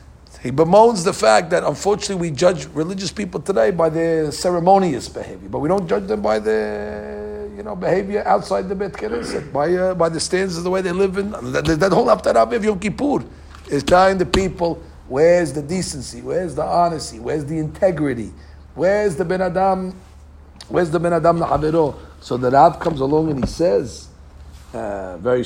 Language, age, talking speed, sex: English, 50-69, 185 wpm, male